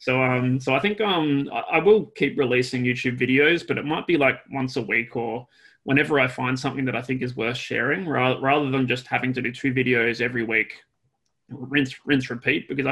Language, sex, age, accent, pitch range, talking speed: Portuguese, male, 20-39, Australian, 120-135 Hz, 210 wpm